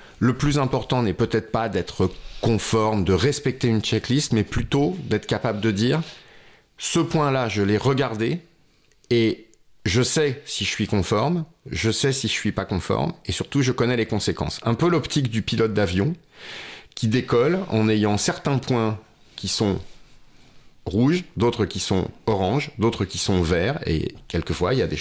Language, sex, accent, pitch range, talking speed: French, male, French, 95-120 Hz, 180 wpm